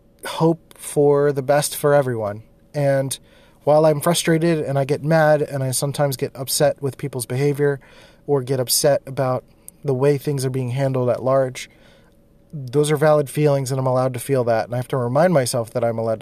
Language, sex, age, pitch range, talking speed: English, male, 30-49, 120-145 Hz, 195 wpm